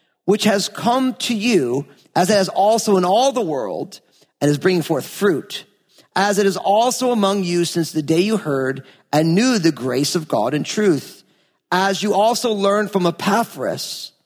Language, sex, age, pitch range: English, male, 40-59, 175-235 Hz